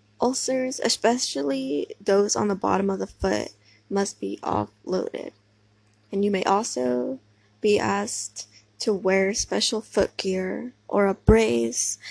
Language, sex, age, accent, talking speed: English, female, 10-29, American, 130 wpm